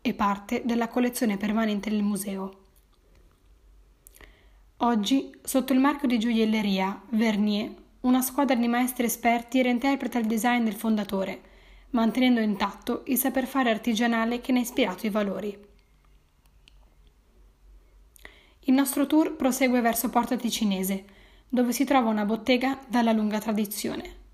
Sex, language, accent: female, Italian, native